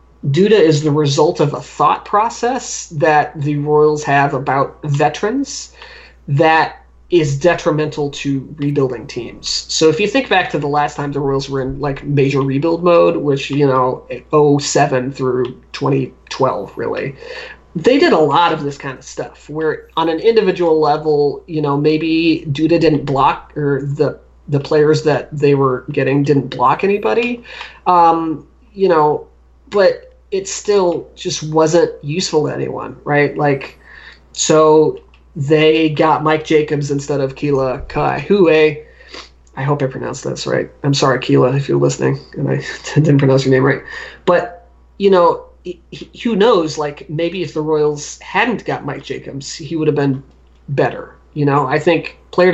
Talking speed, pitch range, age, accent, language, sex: 160 wpm, 140-170 Hz, 30-49, American, English, male